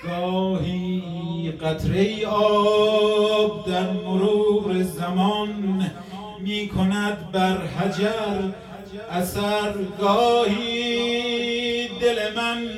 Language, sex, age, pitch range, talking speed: Persian, male, 50-69, 190-240 Hz, 70 wpm